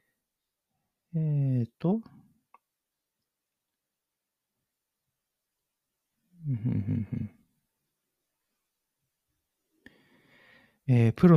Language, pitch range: Japanese, 105-130 Hz